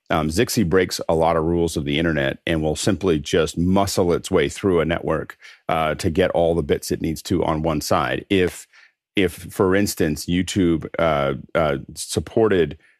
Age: 40-59